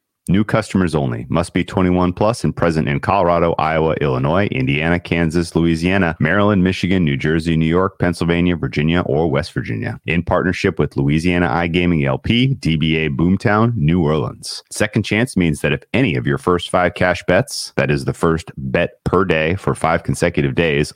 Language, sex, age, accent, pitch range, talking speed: English, male, 30-49, American, 75-95 Hz, 170 wpm